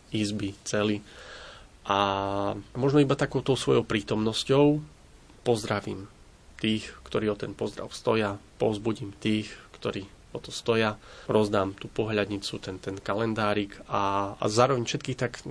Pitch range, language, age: 105-120 Hz, Slovak, 30-49